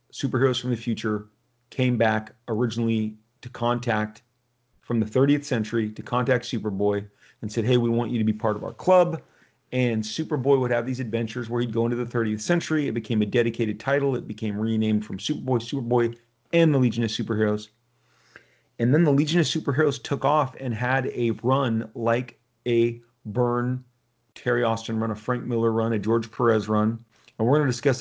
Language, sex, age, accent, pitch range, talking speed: English, male, 40-59, American, 115-130 Hz, 190 wpm